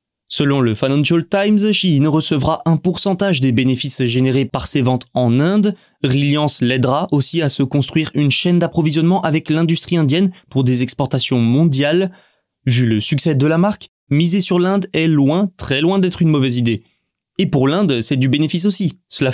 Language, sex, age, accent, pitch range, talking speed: French, male, 20-39, French, 130-175 Hz, 175 wpm